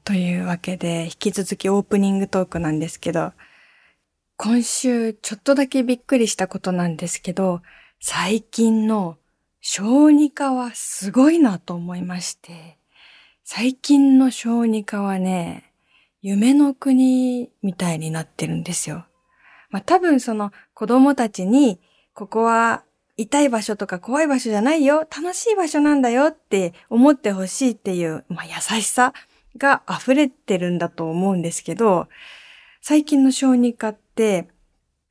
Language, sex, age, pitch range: Japanese, female, 20-39, 185-260 Hz